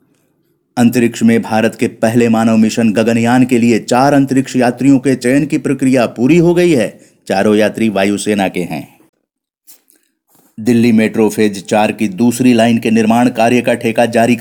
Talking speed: 160 wpm